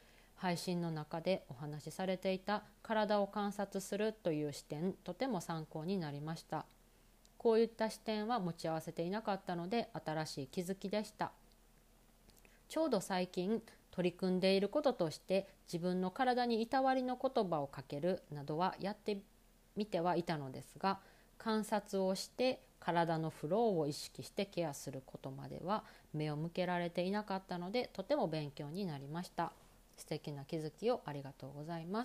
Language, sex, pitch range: Japanese, female, 165-215 Hz